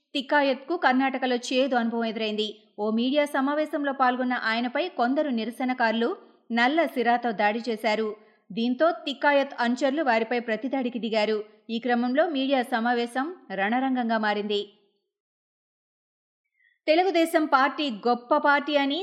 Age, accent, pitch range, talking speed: 30-49, native, 225-285 Hz, 105 wpm